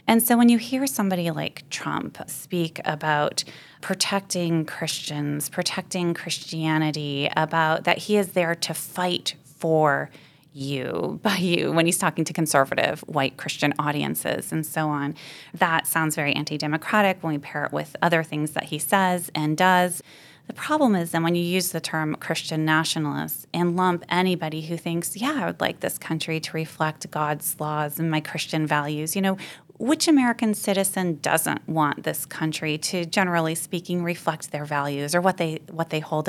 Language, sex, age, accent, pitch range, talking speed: English, female, 20-39, American, 150-185 Hz, 170 wpm